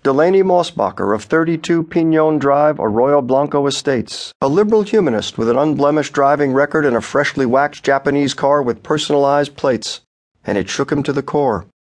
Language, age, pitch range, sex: English, 50-69, 125-165 Hz, male